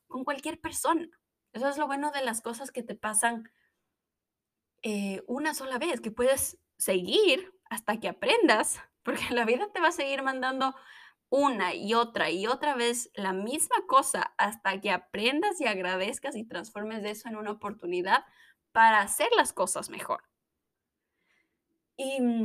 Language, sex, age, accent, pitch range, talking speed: Spanish, female, 20-39, Mexican, 205-275 Hz, 150 wpm